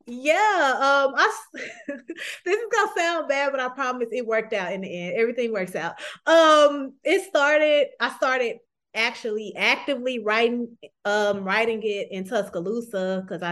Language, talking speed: English, 150 wpm